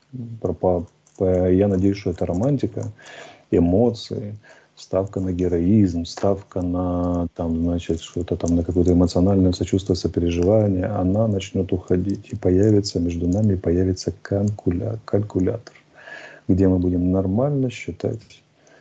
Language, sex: Russian, male